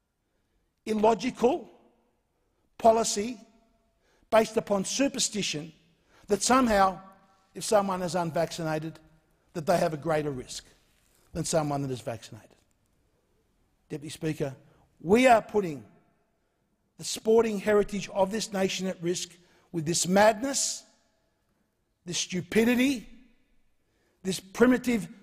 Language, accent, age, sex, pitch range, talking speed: English, Australian, 60-79, male, 170-220 Hz, 100 wpm